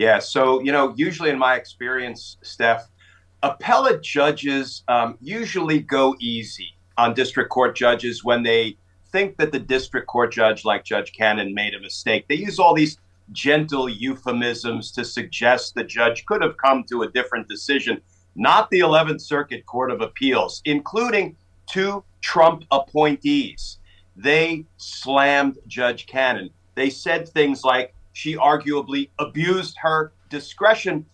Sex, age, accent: male, 50-69, American